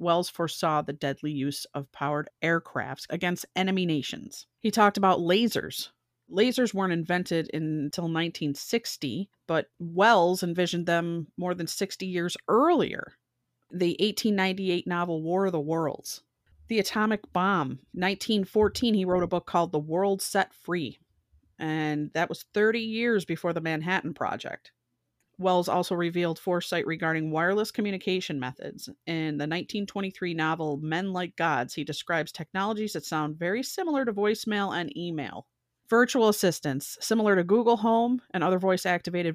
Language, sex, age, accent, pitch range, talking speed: English, female, 30-49, American, 155-195 Hz, 140 wpm